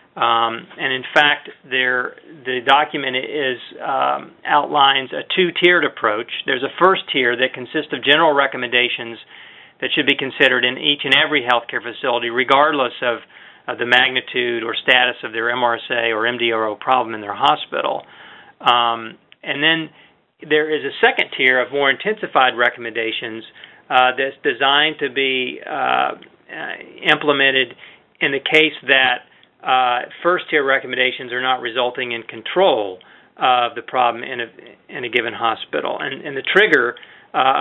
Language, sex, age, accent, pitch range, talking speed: English, male, 40-59, American, 120-145 Hz, 150 wpm